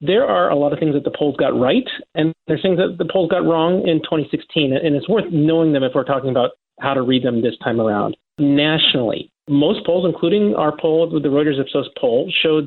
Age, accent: 40-59, American